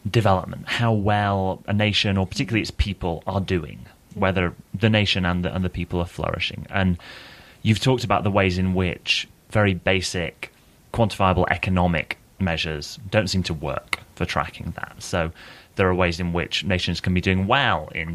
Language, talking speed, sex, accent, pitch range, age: English, 175 wpm, male, British, 85-105 Hz, 30-49